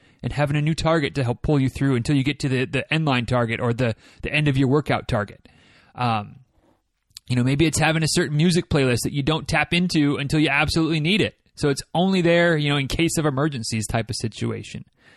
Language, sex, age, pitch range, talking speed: English, male, 30-49, 125-160 Hz, 235 wpm